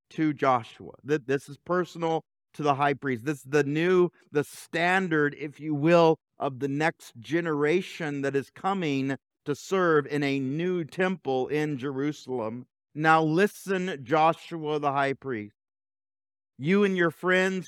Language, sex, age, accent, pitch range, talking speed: English, male, 50-69, American, 145-175 Hz, 145 wpm